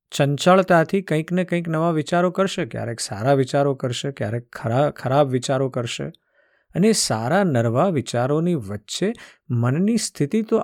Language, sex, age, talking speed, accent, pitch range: Gujarati, male, 50-69, 120 wpm, native, 120-185 Hz